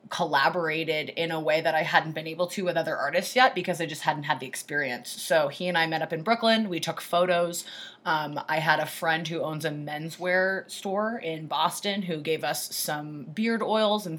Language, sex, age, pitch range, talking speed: English, female, 20-39, 160-190 Hz, 215 wpm